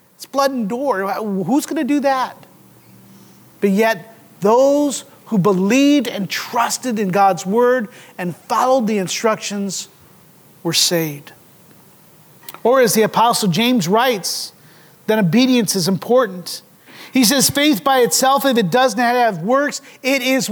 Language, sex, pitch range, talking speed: English, male, 185-250 Hz, 140 wpm